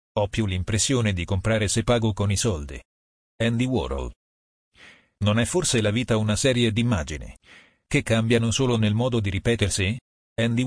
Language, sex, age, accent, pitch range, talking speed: Italian, male, 40-59, native, 95-120 Hz, 165 wpm